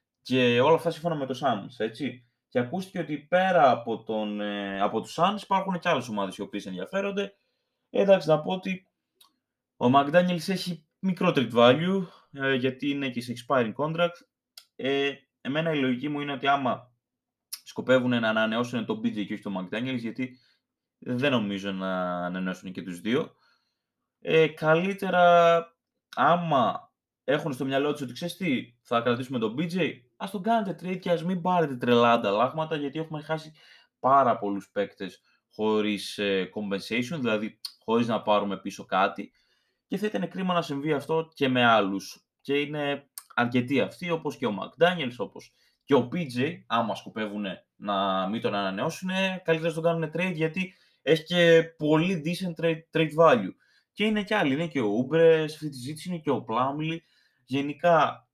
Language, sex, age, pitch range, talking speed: Greek, male, 20-39, 120-170 Hz, 160 wpm